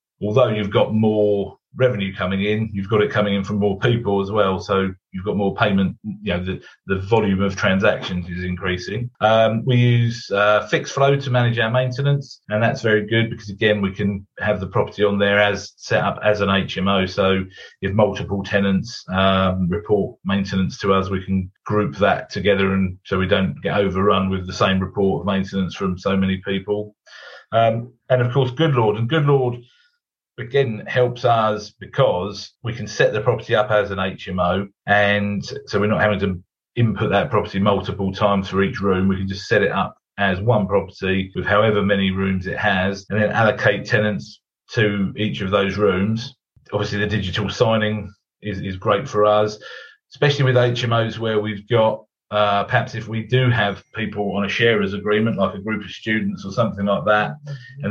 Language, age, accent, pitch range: English, 30-49, British, 95-110 Hz